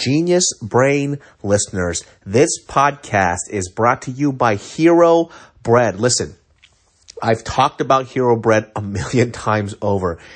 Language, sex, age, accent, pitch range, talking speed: English, male, 30-49, American, 100-140 Hz, 130 wpm